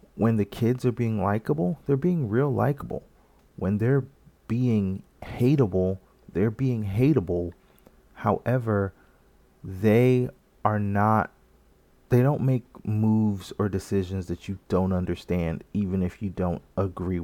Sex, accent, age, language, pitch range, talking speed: male, American, 30-49, English, 95-120 Hz, 125 wpm